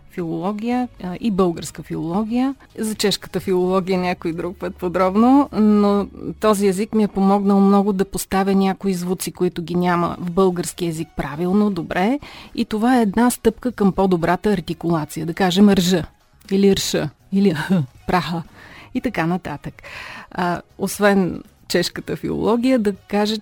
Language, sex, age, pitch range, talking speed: Bulgarian, female, 30-49, 175-210 Hz, 145 wpm